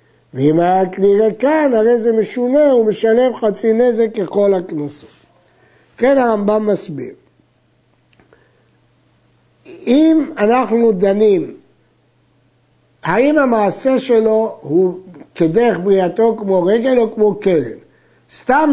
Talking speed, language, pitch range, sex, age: 100 wpm, Hebrew, 180-240 Hz, male, 60-79